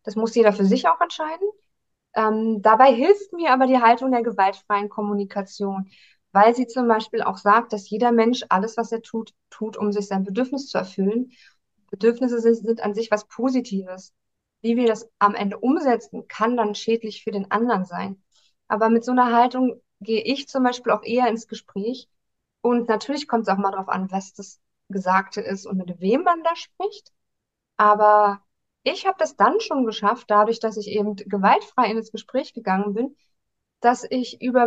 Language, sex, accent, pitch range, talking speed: German, female, German, 205-255 Hz, 185 wpm